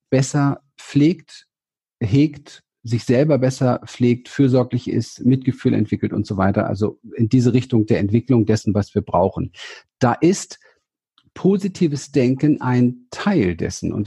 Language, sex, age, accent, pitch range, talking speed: German, male, 50-69, German, 110-140 Hz, 135 wpm